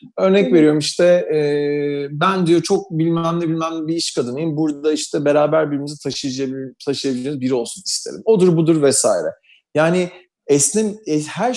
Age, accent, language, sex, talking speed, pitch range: 40-59, native, Turkish, male, 145 wpm, 140-185 Hz